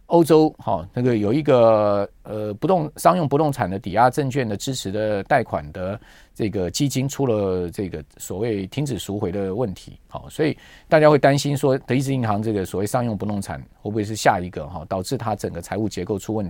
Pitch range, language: 100-150 Hz, Chinese